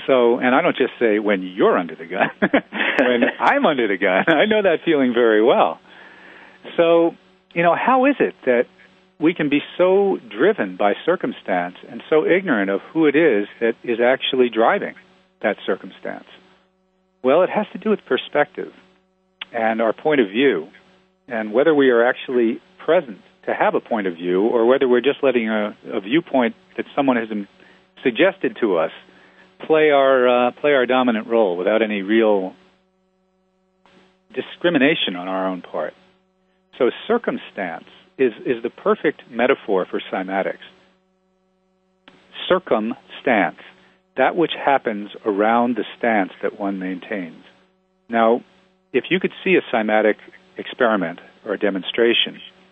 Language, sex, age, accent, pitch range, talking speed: English, male, 50-69, American, 115-185 Hz, 150 wpm